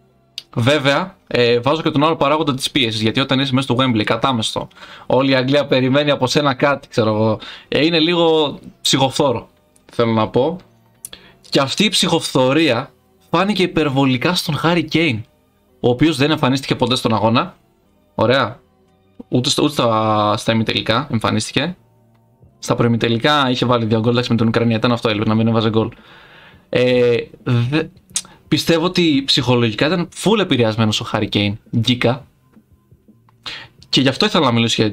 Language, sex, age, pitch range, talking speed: Greek, male, 20-39, 115-150 Hz, 150 wpm